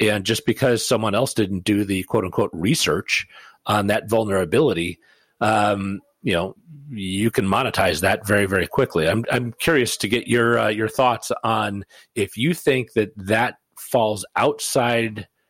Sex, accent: male, American